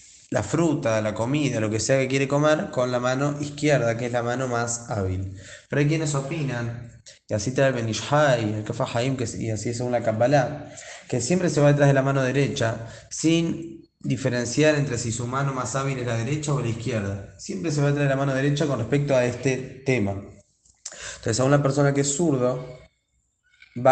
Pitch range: 115-145 Hz